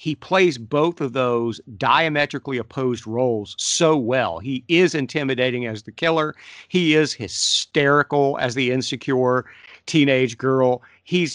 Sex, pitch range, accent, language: male, 115-145 Hz, American, English